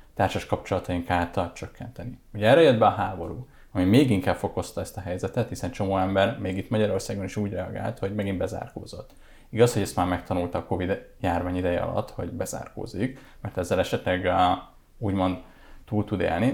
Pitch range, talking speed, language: 95-115 Hz, 175 wpm, Hungarian